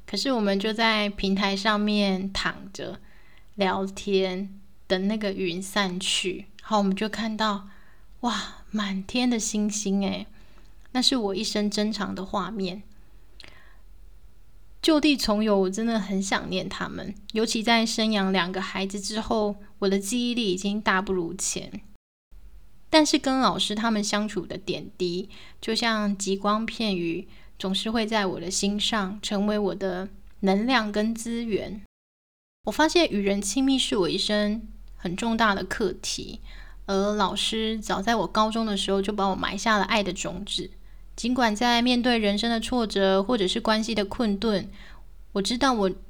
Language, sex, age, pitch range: Chinese, female, 20-39, 190-225 Hz